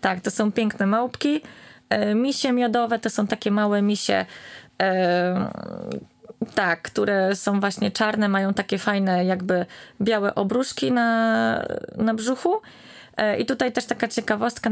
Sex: female